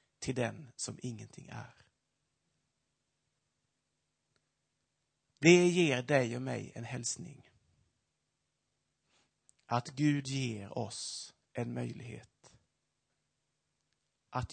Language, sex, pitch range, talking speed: Swedish, male, 115-145 Hz, 80 wpm